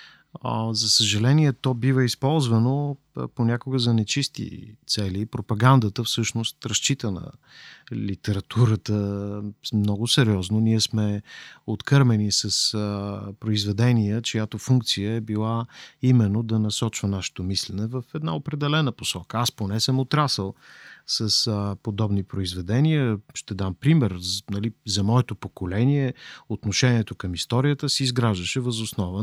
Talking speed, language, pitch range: 115 wpm, Bulgarian, 105-135 Hz